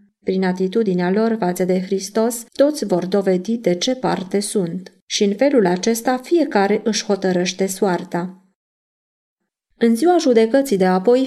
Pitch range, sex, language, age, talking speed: 190-245 Hz, female, Romanian, 20-39, 140 wpm